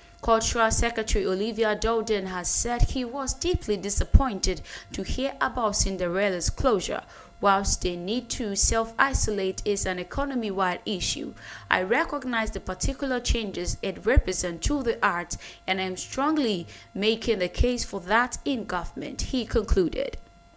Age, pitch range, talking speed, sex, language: 20-39, 195-250 Hz, 135 wpm, female, English